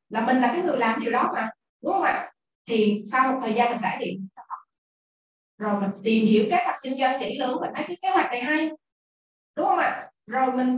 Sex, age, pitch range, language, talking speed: female, 20-39, 225-300 Hz, Vietnamese, 225 wpm